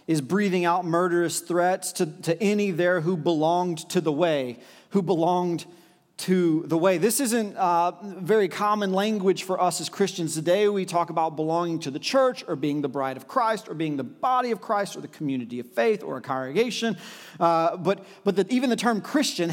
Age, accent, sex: 40-59, American, male